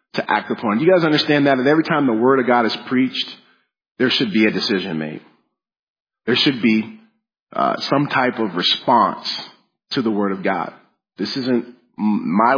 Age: 40-59